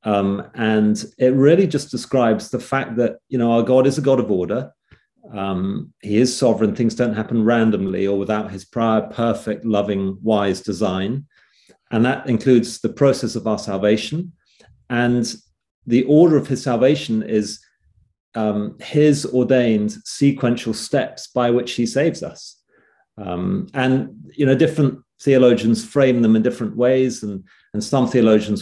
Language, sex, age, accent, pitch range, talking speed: English, male, 40-59, British, 105-130 Hz, 155 wpm